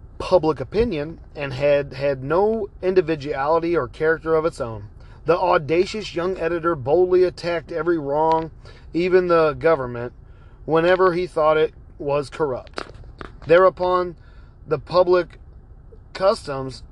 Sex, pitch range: male, 130-180 Hz